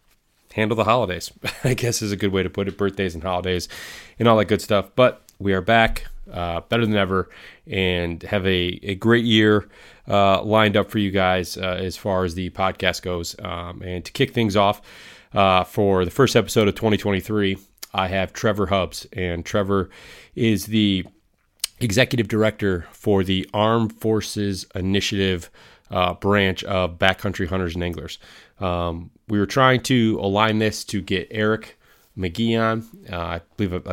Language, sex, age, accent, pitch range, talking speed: English, male, 30-49, American, 90-110 Hz, 170 wpm